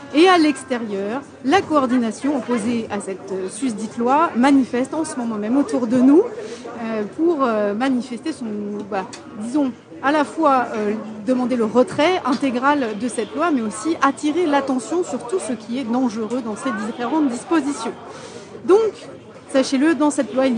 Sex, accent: female, French